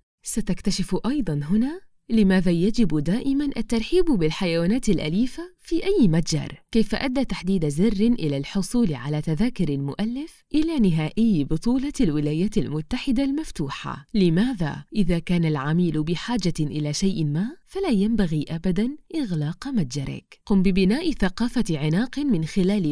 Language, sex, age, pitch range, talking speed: Arabic, female, 20-39, 160-240 Hz, 120 wpm